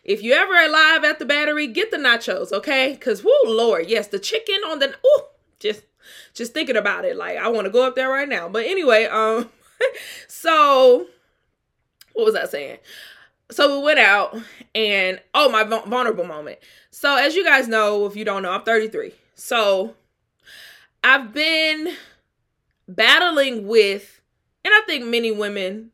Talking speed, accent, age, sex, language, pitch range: 165 wpm, American, 20-39, female, English, 195-290 Hz